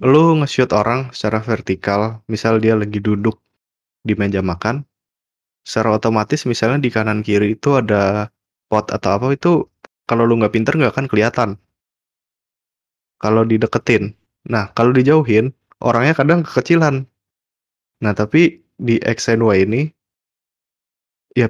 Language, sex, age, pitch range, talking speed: Indonesian, male, 20-39, 105-130 Hz, 125 wpm